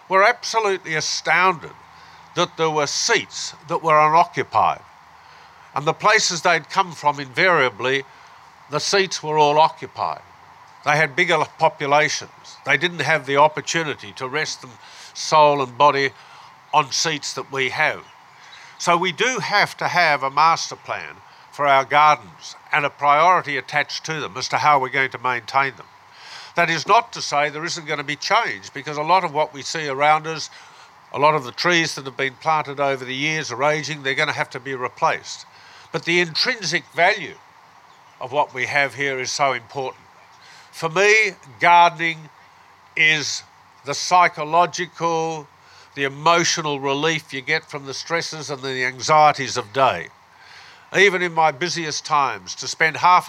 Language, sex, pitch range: English, male, 140-165 Hz